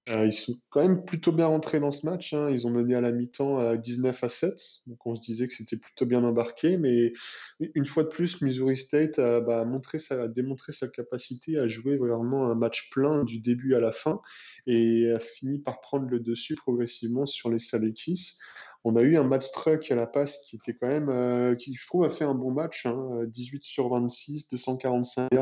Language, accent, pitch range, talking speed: French, French, 120-140 Hz, 210 wpm